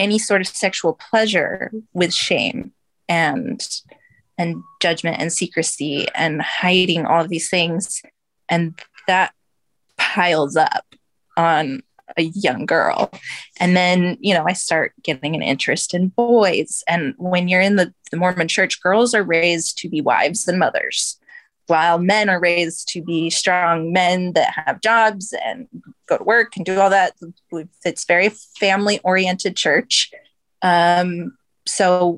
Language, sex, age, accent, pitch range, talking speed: English, female, 20-39, American, 170-210 Hz, 145 wpm